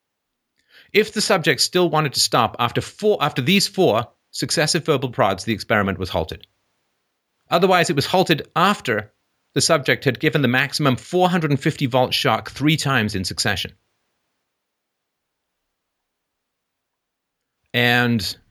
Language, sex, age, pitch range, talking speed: English, male, 40-59, 105-145 Hz, 135 wpm